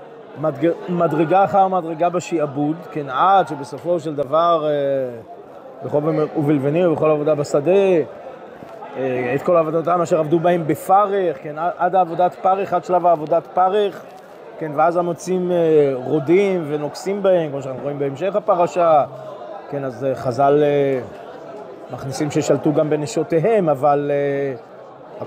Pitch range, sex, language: 145-175 Hz, male, Hebrew